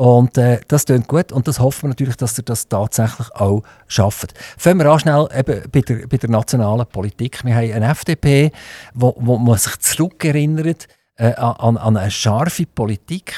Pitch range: 115-145 Hz